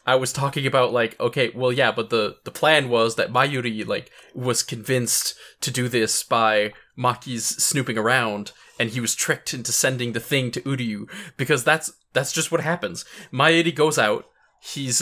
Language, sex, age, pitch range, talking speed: English, male, 20-39, 115-145 Hz, 180 wpm